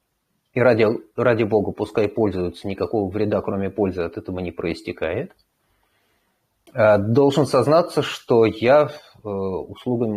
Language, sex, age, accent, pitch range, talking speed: Russian, male, 30-49, native, 90-115 Hz, 110 wpm